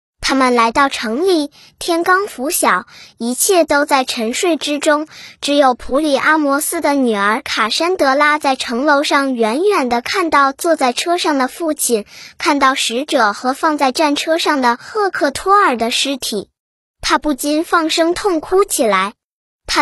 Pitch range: 255-330 Hz